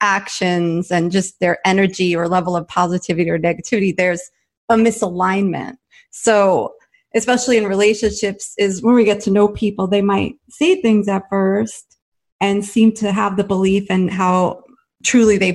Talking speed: 160 wpm